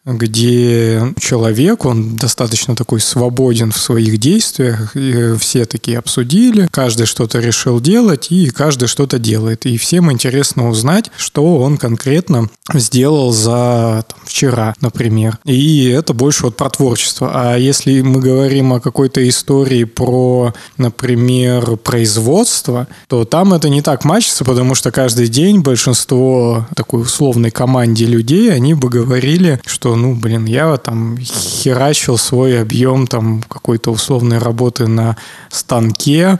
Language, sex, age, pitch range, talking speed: Russian, male, 20-39, 115-140 Hz, 130 wpm